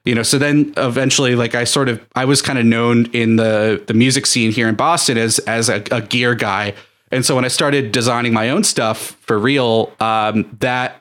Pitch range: 110-125 Hz